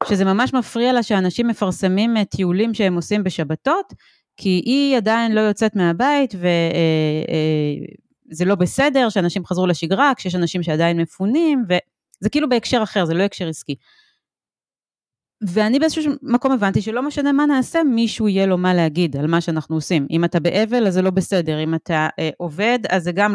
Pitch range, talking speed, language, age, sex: 170-230 Hz, 165 wpm, Hebrew, 30-49, female